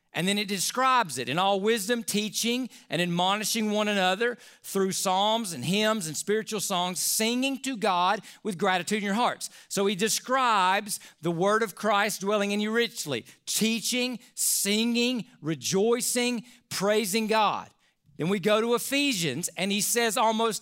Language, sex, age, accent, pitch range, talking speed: English, male, 40-59, American, 190-235 Hz, 155 wpm